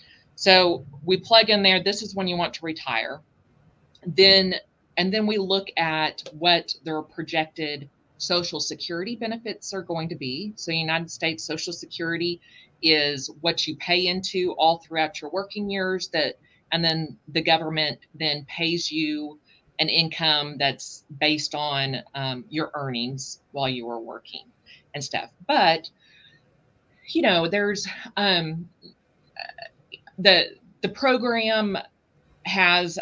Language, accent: English, American